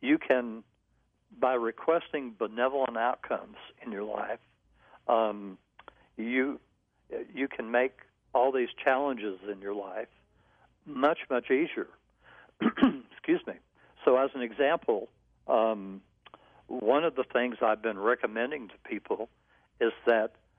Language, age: English, 60-79